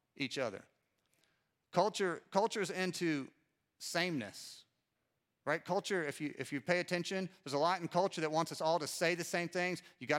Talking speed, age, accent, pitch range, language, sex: 170 wpm, 40-59, American, 145-175 Hz, English, male